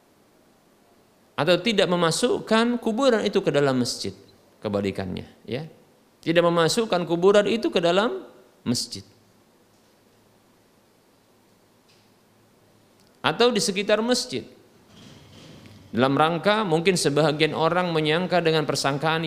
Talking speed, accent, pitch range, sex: 90 wpm, native, 120-170 Hz, male